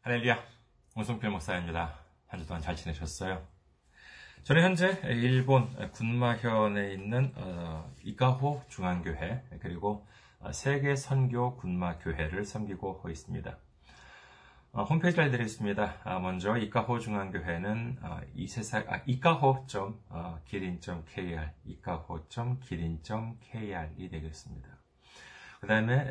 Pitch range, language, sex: 90-125 Hz, Korean, male